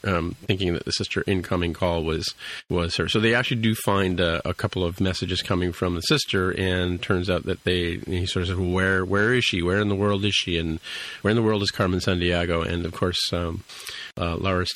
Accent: American